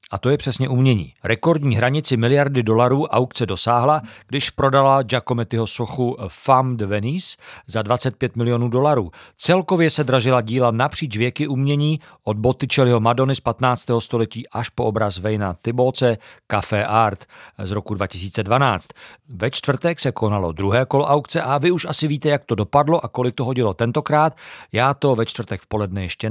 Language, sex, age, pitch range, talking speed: Czech, male, 50-69, 110-145 Hz, 165 wpm